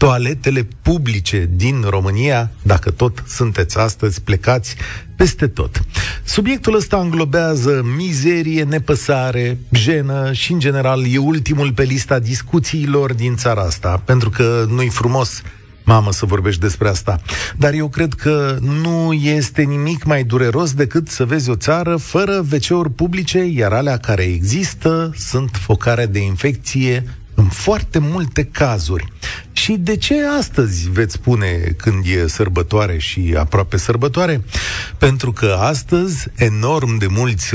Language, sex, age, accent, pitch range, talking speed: Romanian, male, 40-59, native, 105-150 Hz, 135 wpm